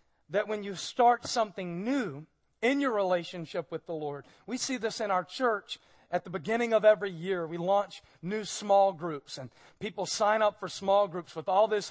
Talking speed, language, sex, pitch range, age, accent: 195 wpm, English, male, 175-220 Hz, 40-59, American